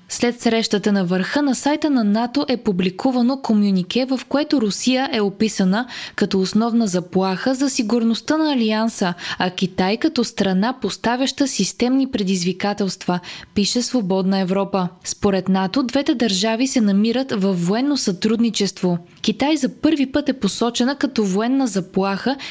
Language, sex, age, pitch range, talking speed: Bulgarian, female, 20-39, 195-255 Hz, 135 wpm